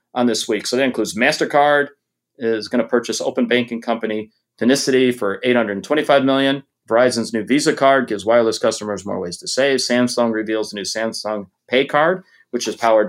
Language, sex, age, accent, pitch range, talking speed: English, male, 30-49, American, 100-125 Hz, 180 wpm